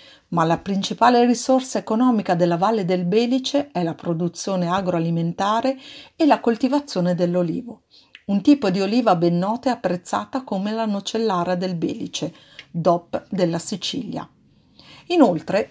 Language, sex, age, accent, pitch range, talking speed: Italian, female, 50-69, native, 175-255 Hz, 130 wpm